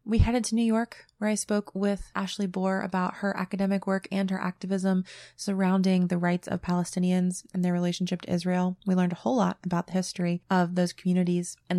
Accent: American